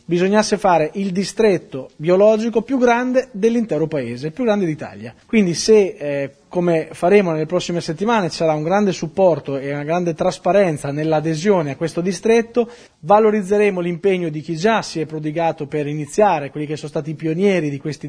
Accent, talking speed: native, 170 wpm